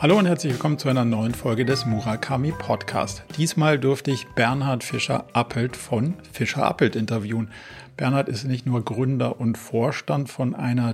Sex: male